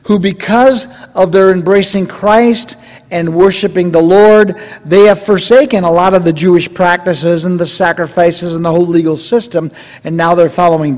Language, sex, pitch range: English, male, 170-215 Hz